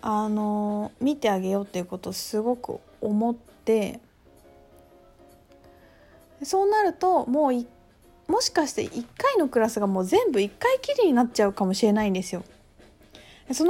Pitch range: 205-305 Hz